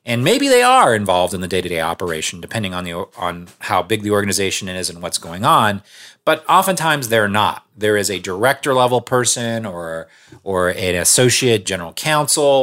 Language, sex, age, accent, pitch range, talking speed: English, male, 30-49, American, 95-130 Hz, 190 wpm